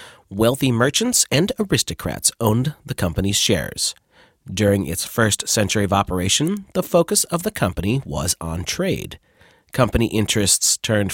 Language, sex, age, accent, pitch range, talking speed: English, male, 40-59, American, 90-135 Hz, 135 wpm